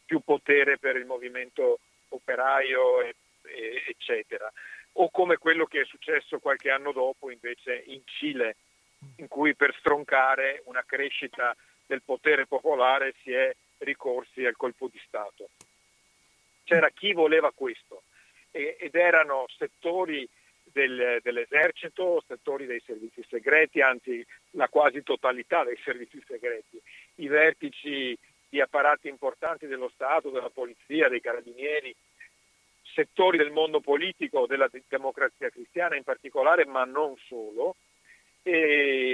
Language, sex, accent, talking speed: Italian, male, native, 120 wpm